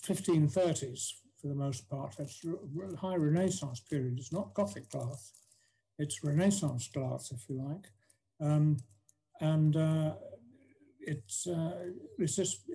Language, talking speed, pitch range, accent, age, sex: English, 115 wpm, 130-175 Hz, British, 60-79, male